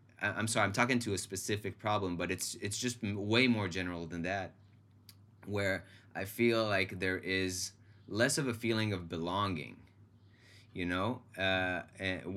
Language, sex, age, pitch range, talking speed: English, male, 20-39, 95-115 Hz, 155 wpm